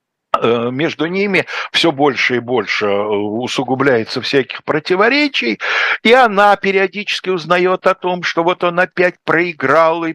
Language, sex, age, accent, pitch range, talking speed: Russian, male, 60-79, native, 120-180 Hz, 125 wpm